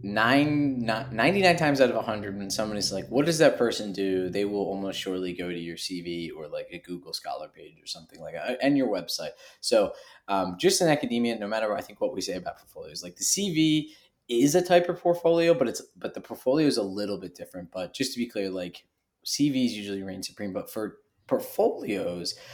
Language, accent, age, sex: English, American, 20-39, male